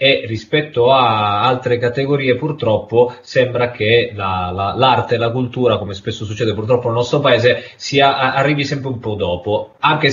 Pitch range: 100-130 Hz